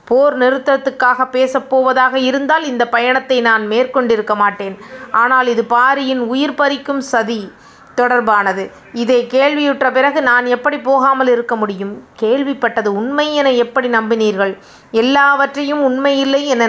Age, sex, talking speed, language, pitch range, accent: 30-49, female, 115 wpm, Tamil, 220-265 Hz, native